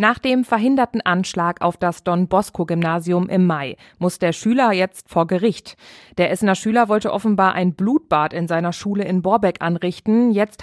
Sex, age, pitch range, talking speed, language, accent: female, 20-39, 170-210 Hz, 170 wpm, German, German